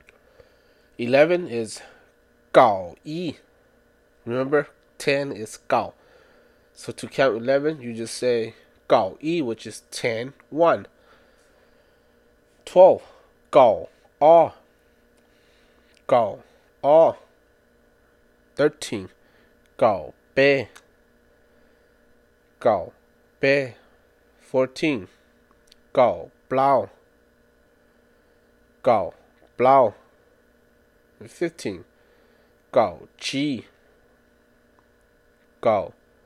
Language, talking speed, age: English, 65 wpm, 30-49